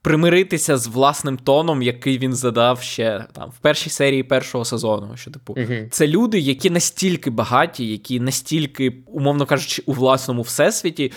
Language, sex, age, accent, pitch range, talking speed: Ukrainian, male, 20-39, native, 125-155 Hz, 150 wpm